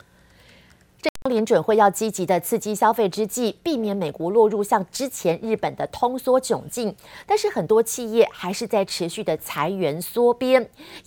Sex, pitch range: female, 180-245 Hz